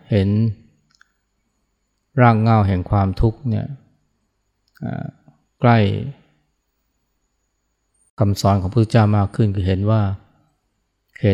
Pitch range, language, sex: 95-110 Hz, Thai, male